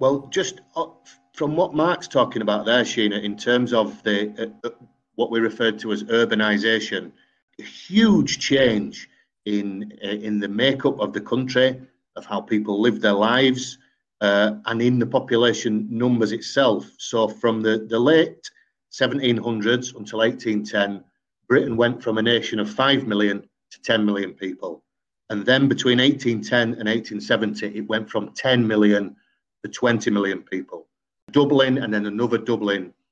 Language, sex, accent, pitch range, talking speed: English, male, British, 105-125 Hz, 150 wpm